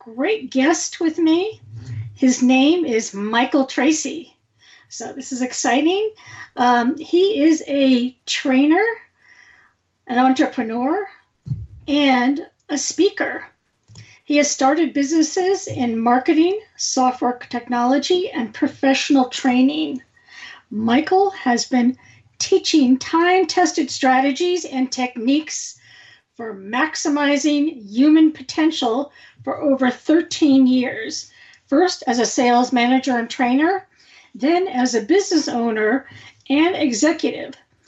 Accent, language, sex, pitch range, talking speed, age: American, English, female, 245-320 Hz, 100 wpm, 40-59